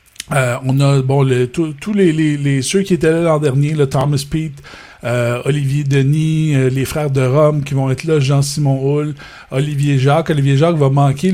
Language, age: French, 50-69